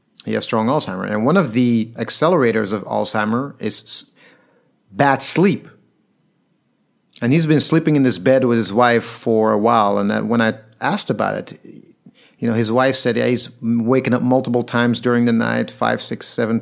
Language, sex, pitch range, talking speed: English, male, 115-135 Hz, 180 wpm